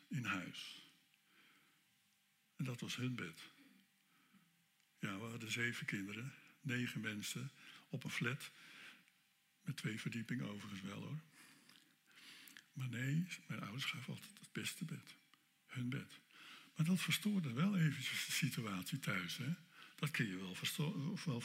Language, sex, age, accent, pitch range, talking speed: Dutch, male, 60-79, Dutch, 130-175 Hz, 130 wpm